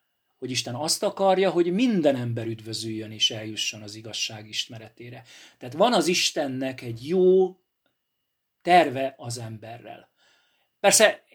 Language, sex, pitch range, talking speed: Hungarian, male, 120-165 Hz, 120 wpm